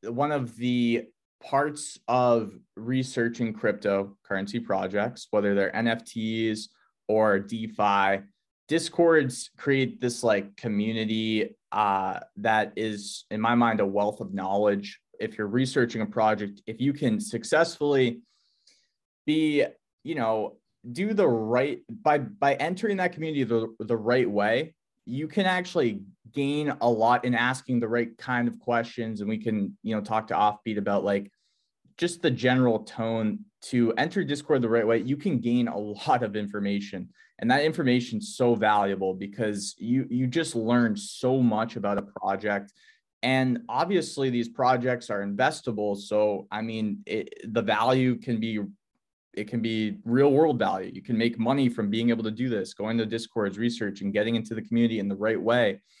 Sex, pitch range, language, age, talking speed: male, 105-130 Hz, English, 20-39, 160 wpm